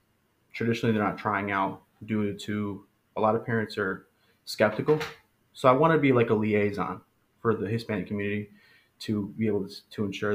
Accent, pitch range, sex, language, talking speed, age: American, 100-115 Hz, male, English, 180 wpm, 20-39